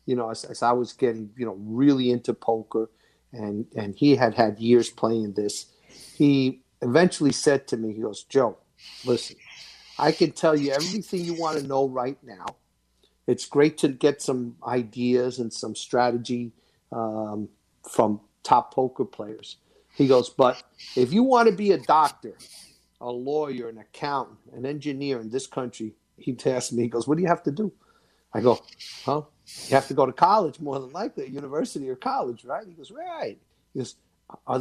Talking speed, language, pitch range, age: 185 wpm, English, 115-155 Hz, 50-69